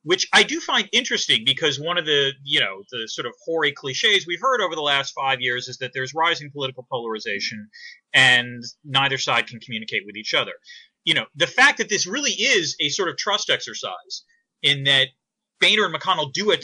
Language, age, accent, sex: English, 30-49, American, male